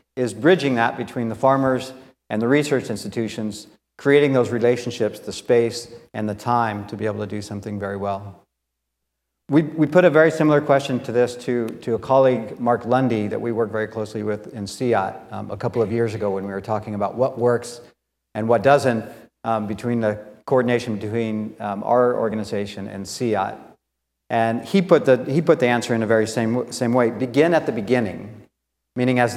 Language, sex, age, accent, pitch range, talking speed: English, male, 50-69, American, 105-125 Hz, 190 wpm